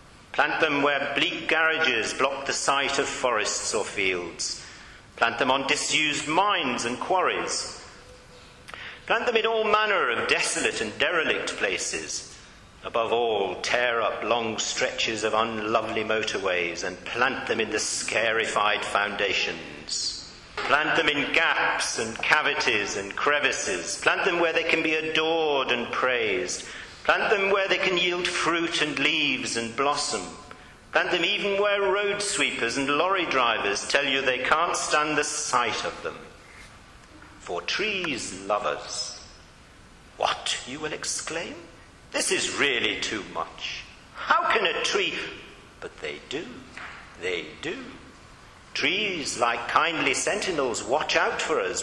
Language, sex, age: English, male, 50-69